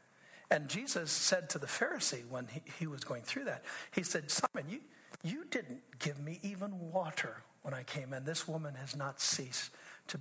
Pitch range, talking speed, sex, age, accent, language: 140-195 Hz, 195 wpm, male, 60-79, American, English